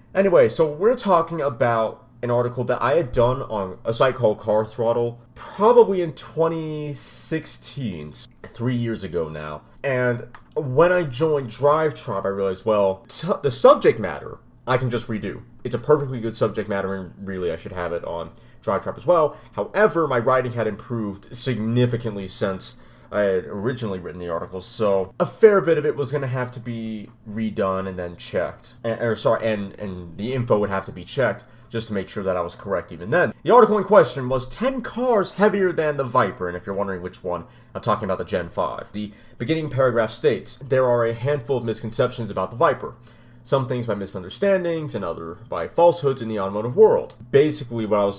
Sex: male